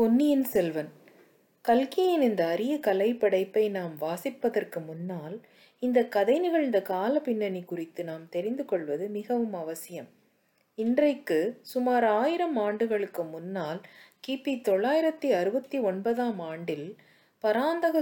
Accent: Indian